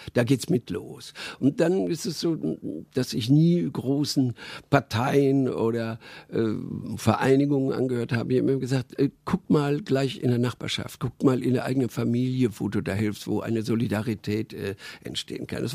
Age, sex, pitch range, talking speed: 50-69, male, 115-150 Hz, 180 wpm